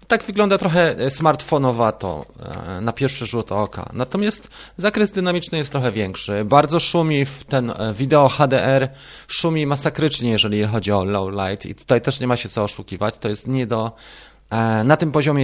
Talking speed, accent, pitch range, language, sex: 165 wpm, native, 105-145 Hz, Polish, male